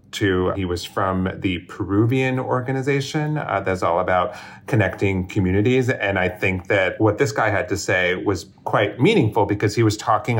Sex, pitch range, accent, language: male, 95-110 Hz, American, English